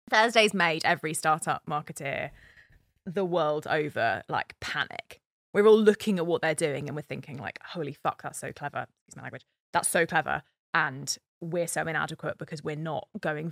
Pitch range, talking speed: 150-200 Hz, 180 wpm